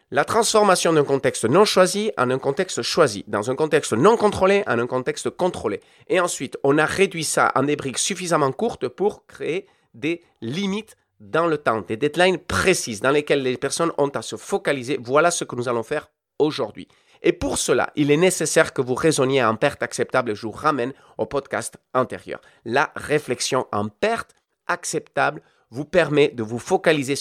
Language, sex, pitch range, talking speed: French, male, 130-185 Hz, 185 wpm